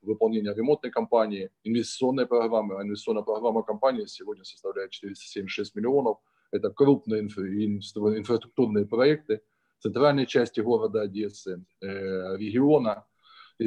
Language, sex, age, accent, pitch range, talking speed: Ukrainian, male, 20-39, native, 105-145 Hz, 115 wpm